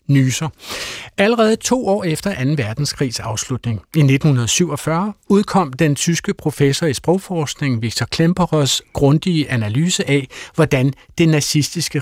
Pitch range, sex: 130-165 Hz, male